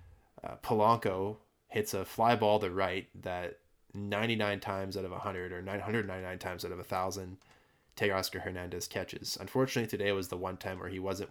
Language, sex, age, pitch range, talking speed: English, male, 20-39, 95-105 Hz, 185 wpm